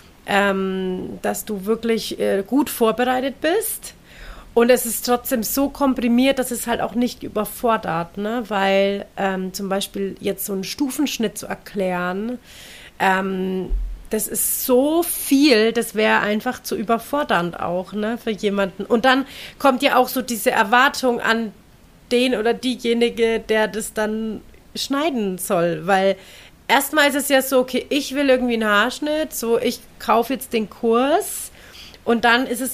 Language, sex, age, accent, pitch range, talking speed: German, female, 30-49, German, 200-250 Hz, 150 wpm